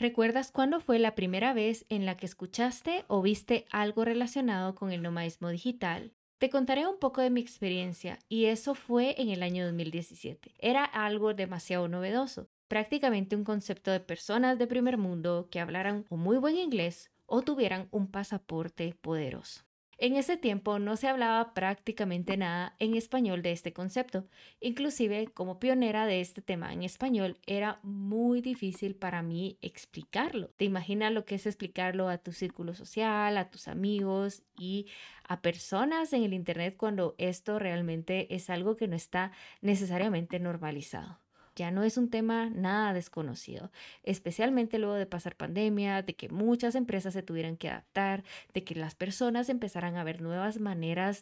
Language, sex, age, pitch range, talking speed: Spanish, female, 20-39, 180-230 Hz, 165 wpm